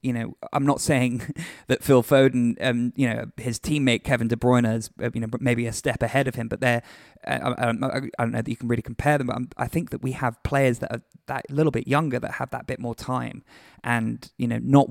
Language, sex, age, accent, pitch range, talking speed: English, male, 20-39, British, 120-140 Hz, 250 wpm